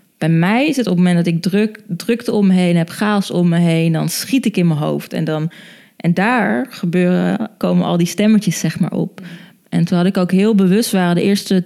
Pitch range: 180-210 Hz